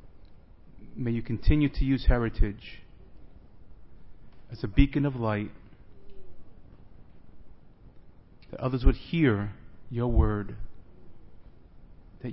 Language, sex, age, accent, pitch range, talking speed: English, male, 40-59, American, 90-115 Hz, 90 wpm